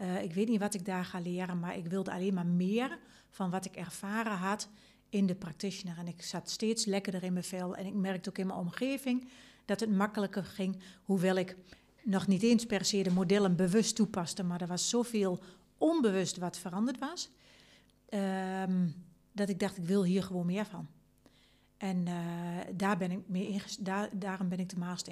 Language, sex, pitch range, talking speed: Dutch, female, 180-205 Hz, 185 wpm